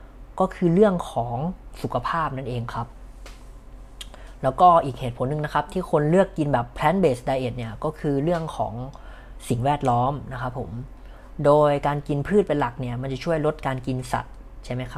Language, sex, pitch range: Thai, female, 125-150 Hz